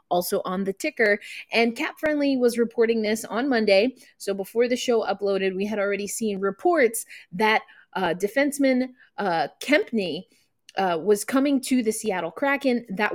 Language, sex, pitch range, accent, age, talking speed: English, female, 200-250 Hz, American, 20-39, 160 wpm